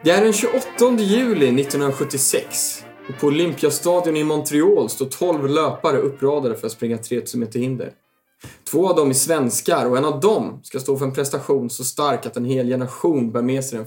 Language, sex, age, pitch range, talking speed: English, male, 20-39, 125-170 Hz, 195 wpm